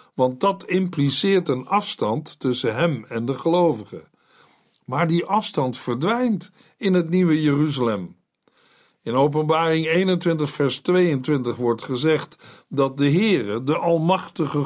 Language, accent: Dutch, Dutch